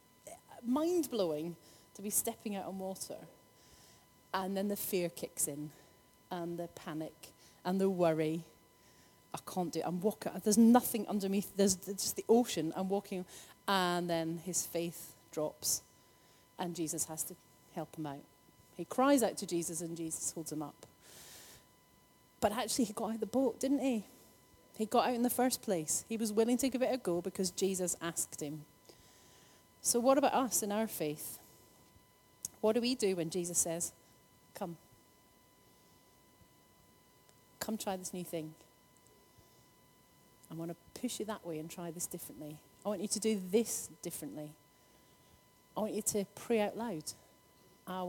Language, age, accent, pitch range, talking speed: English, 30-49, British, 165-220 Hz, 165 wpm